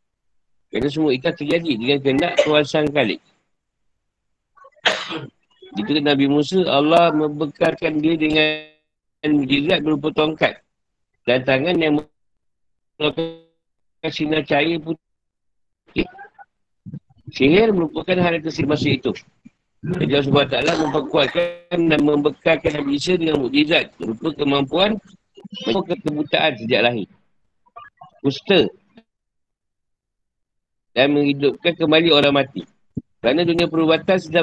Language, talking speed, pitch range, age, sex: Malay, 100 wpm, 145-165 Hz, 50-69, male